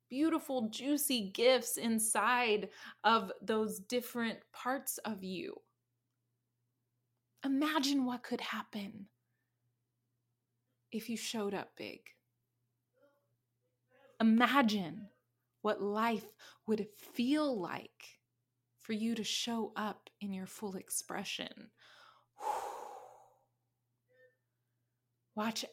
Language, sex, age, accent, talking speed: English, female, 20-39, American, 80 wpm